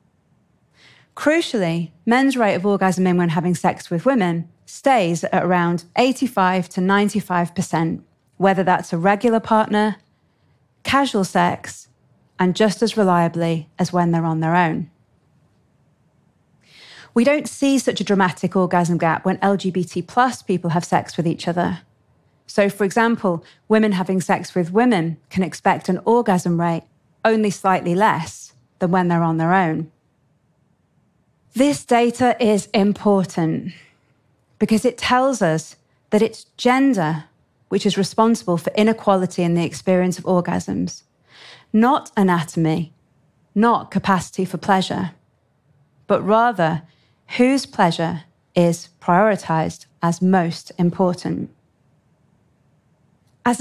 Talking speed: 120 wpm